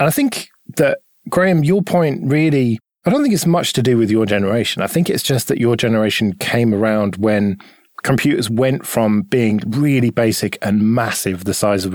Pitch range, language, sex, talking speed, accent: 105-135 Hz, English, male, 195 wpm, British